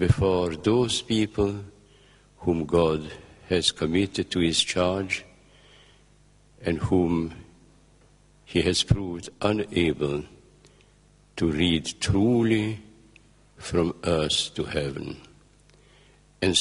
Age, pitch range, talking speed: 60-79, 85-105 Hz, 85 wpm